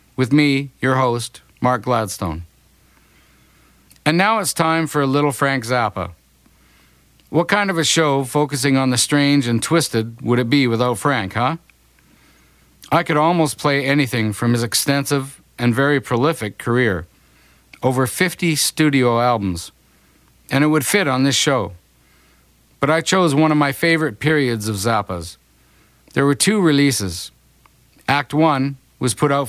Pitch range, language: 120-150 Hz, English